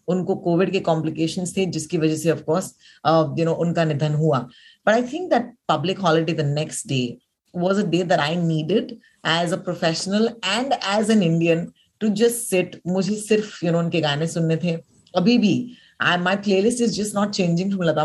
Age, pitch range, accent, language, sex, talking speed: 30-49, 160-230 Hz, native, Hindi, female, 155 wpm